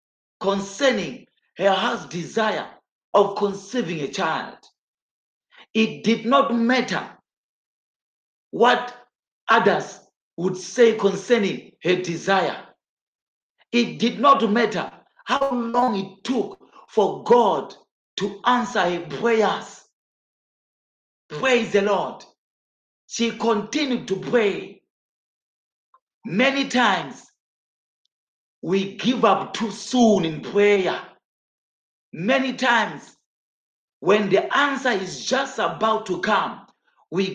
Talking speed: 95 wpm